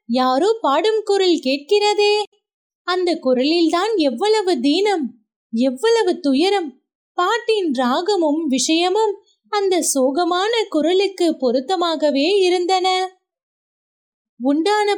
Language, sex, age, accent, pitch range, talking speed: Tamil, female, 20-39, native, 300-405 Hz, 60 wpm